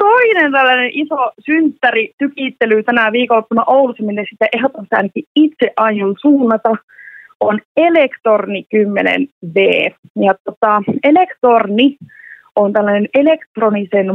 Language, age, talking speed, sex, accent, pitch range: Finnish, 30-49, 100 wpm, female, native, 215-285 Hz